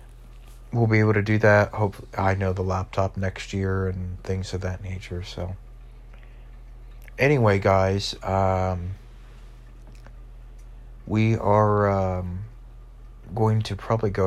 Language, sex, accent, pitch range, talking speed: English, male, American, 95-120 Hz, 120 wpm